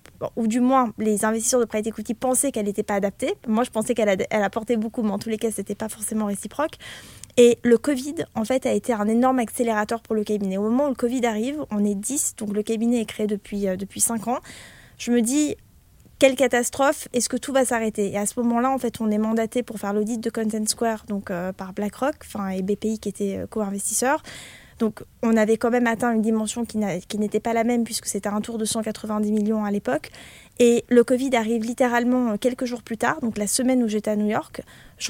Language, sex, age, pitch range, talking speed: French, female, 20-39, 215-245 Hz, 240 wpm